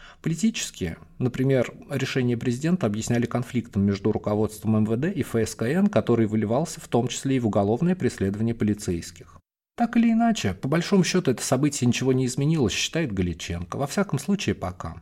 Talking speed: 150 wpm